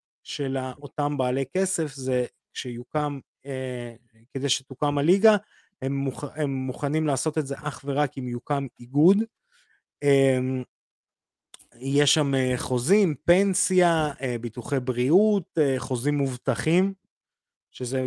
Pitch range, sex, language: 125-150 Hz, male, Hebrew